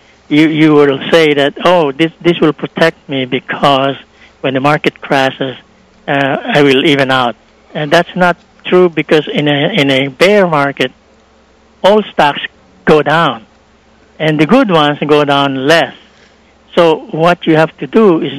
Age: 60-79